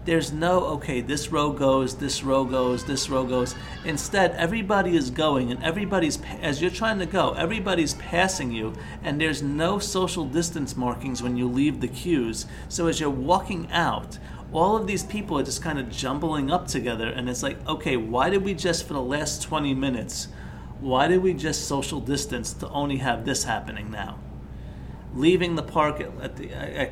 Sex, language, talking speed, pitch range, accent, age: male, English, 185 wpm, 125-160 Hz, American, 40-59